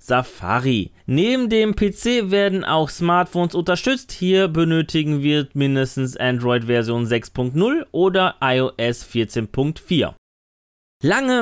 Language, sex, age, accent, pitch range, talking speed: German, male, 30-49, German, 130-190 Hz, 100 wpm